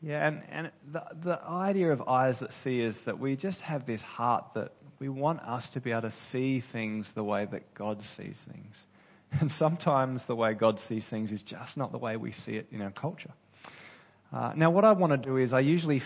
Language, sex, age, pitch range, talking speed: English, male, 20-39, 110-145 Hz, 230 wpm